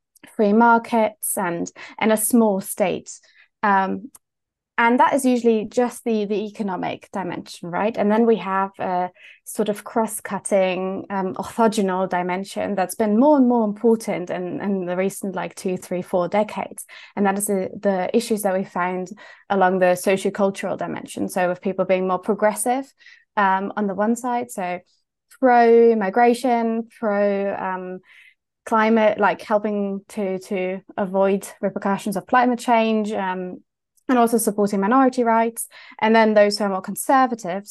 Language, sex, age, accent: English, female, 20-39, British